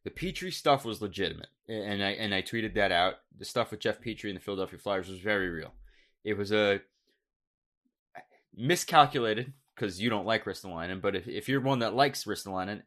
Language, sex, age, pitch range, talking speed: English, male, 20-39, 105-130 Hz, 190 wpm